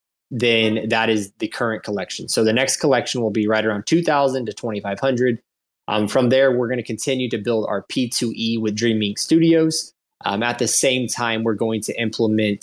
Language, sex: English, male